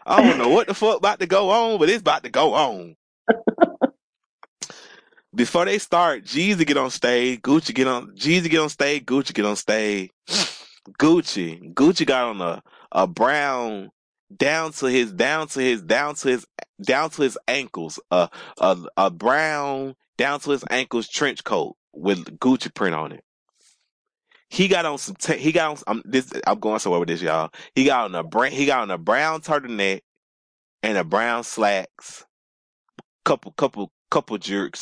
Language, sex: English, male